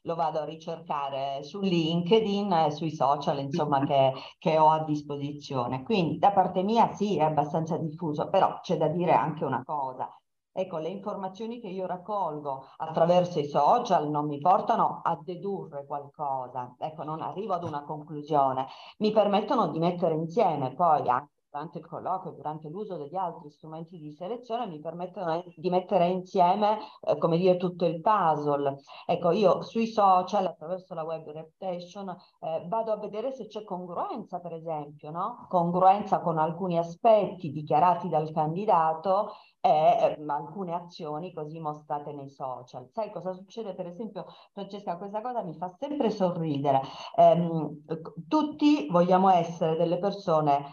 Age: 40-59